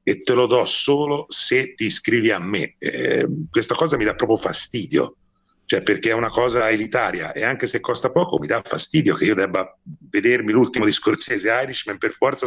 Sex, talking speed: male, 190 wpm